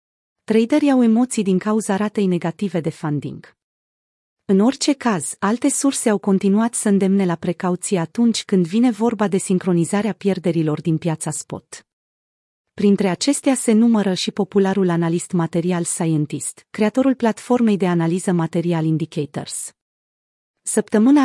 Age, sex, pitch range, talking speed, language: 30-49, female, 170-225 Hz, 130 wpm, Romanian